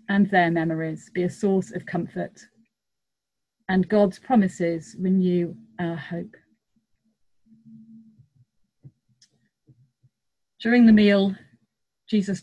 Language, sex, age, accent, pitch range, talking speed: English, female, 40-59, British, 180-225 Hz, 85 wpm